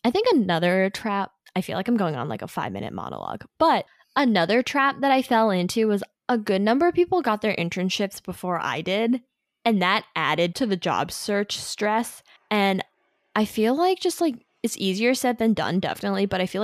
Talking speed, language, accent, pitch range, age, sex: 205 wpm, English, American, 170-230 Hz, 10-29, female